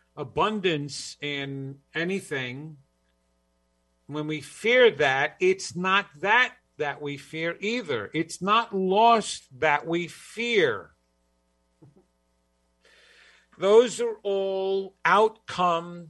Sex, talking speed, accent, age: male, 90 wpm, American, 50-69